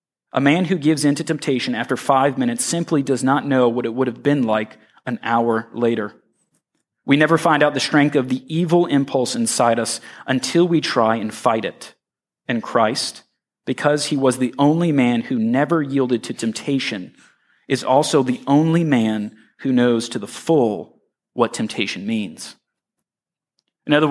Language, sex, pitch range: English, male, 120-155 Hz